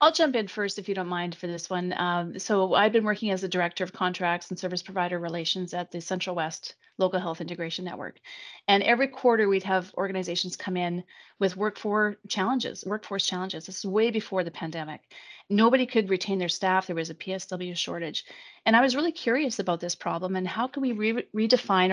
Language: English